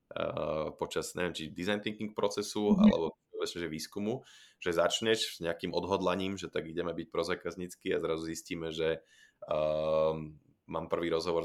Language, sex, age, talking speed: English, male, 20-39, 150 wpm